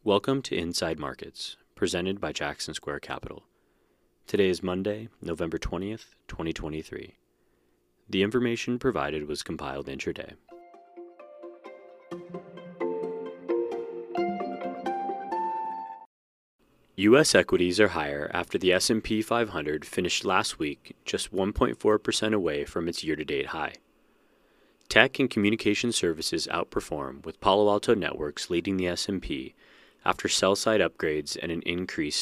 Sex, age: male, 30-49